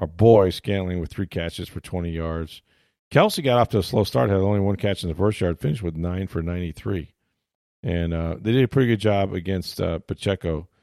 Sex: male